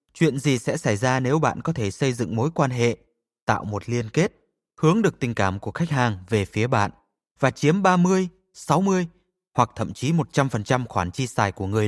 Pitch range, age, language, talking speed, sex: 115-160 Hz, 20-39, Vietnamese, 205 wpm, male